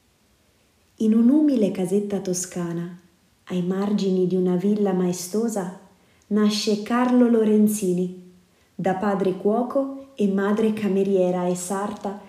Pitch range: 185-225 Hz